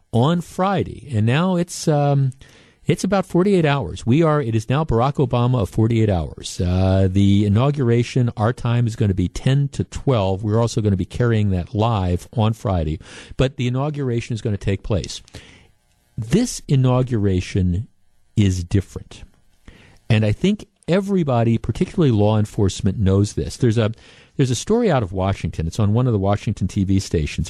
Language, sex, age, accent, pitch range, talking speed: English, male, 50-69, American, 95-125 Hz, 175 wpm